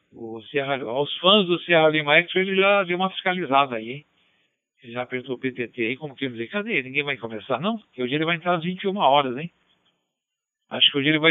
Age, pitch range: 60-79, 120-155 Hz